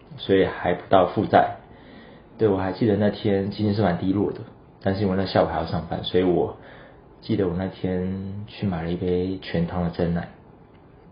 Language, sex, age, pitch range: Chinese, male, 30-49, 90-100 Hz